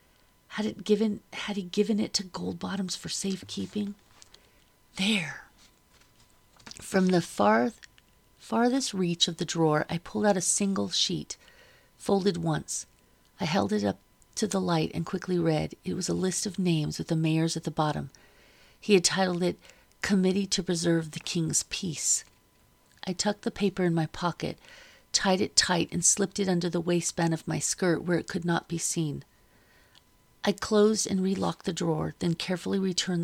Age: 40-59